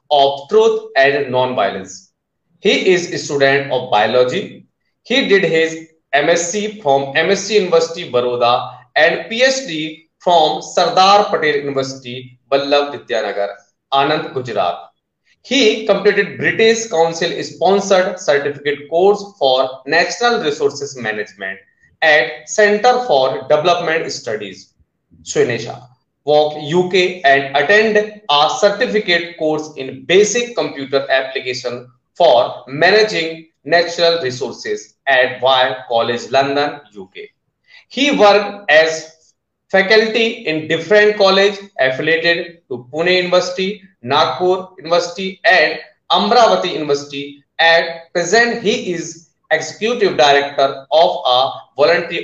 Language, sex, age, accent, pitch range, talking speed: Marathi, male, 20-39, native, 135-200 Hz, 105 wpm